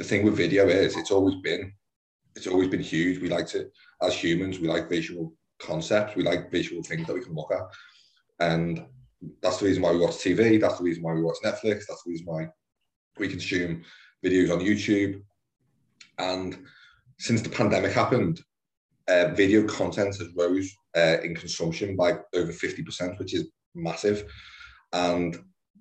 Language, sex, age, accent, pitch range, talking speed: English, male, 30-49, British, 85-105 Hz, 170 wpm